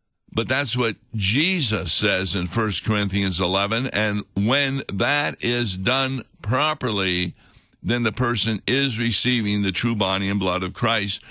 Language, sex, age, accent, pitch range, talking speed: English, male, 60-79, American, 105-135 Hz, 145 wpm